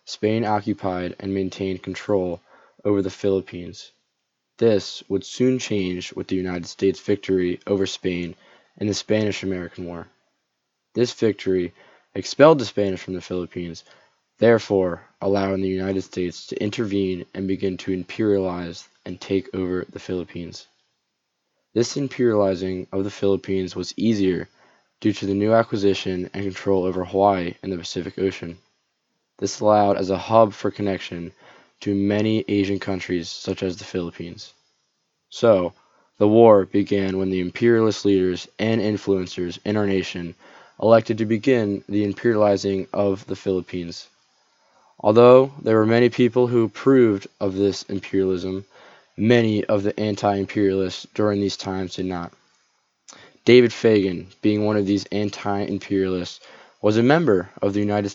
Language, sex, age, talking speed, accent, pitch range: English, male, 20-39, 140 wpm, American, 95-105 Hz